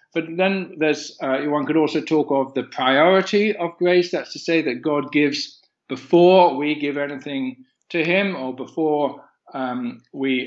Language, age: English, 50-69